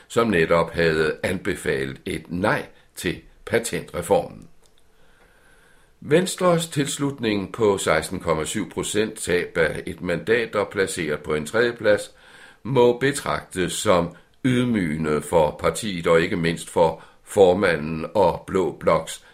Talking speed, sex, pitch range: 110 wpm, male, 85-140 Hz